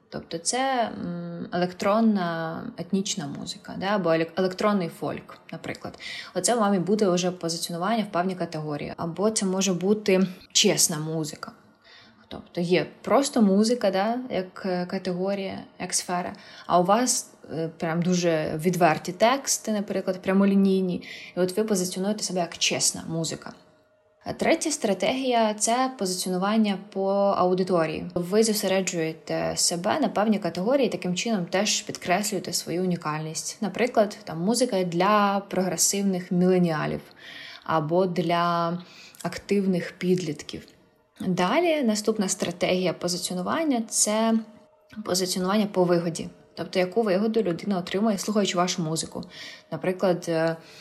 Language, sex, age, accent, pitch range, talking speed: Ukrainian, female, 20-39, native, 175-210 Hz, 115 wpm